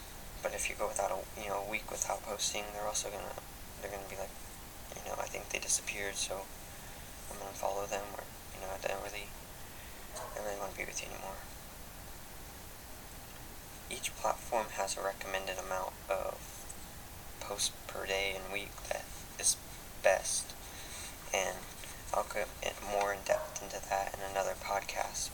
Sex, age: male, 20-39